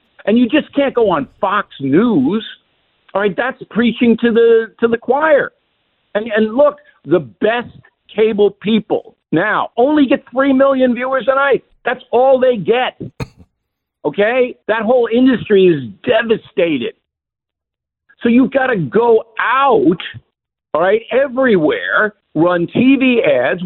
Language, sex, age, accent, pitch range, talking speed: English, male, 50-69, American, 195-275 Hz, 135 wpm